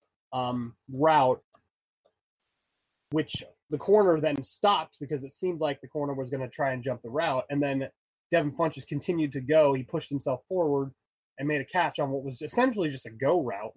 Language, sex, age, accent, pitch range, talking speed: English, male, 20-39, American, 130-155 Hz, 190 wpm